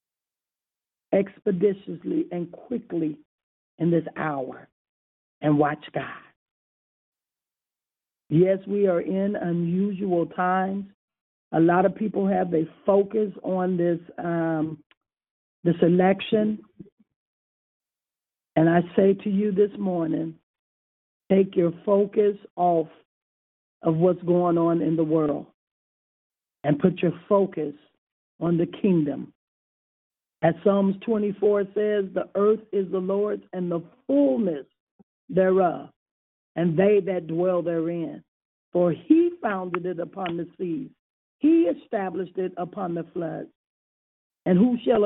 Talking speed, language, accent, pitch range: 115 wpm, English, American, 160-195 Hz